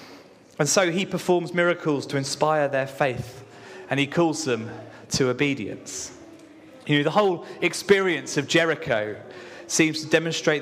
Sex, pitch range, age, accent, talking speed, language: male, 130-160 Hz, 30-49, British, 140 wpm, English